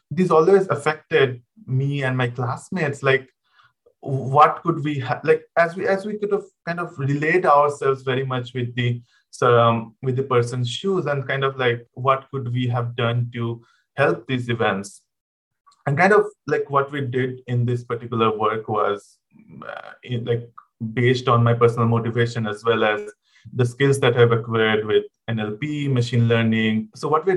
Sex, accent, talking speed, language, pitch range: male, Indian, 175 wpm, English, 115-145 Hz